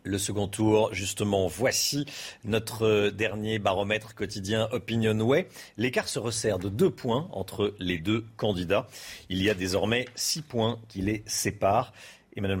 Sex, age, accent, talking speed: male, 40-59, French, 150 wpm